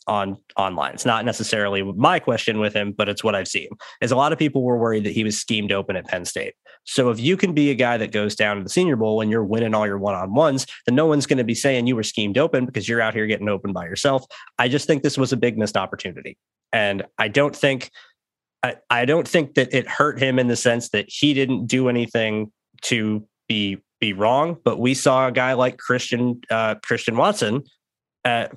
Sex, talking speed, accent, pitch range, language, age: male, 240 wpm, American, 105-130 Hz, English, 20-39